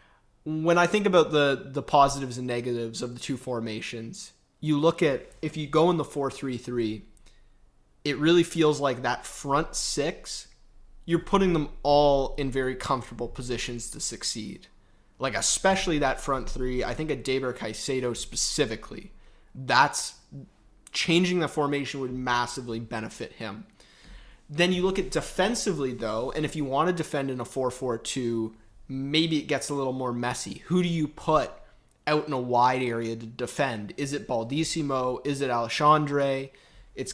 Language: English